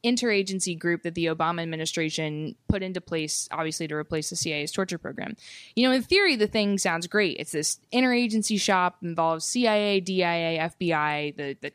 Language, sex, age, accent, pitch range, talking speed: English, female, 20-39, American, 165-210 Hz, 175 wpm